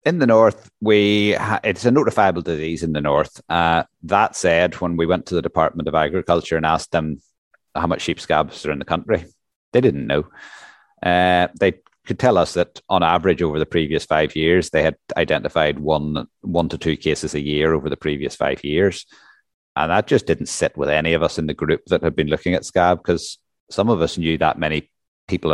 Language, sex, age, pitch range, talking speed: English, male, 30-49, 75-85 Hz, 210 wpm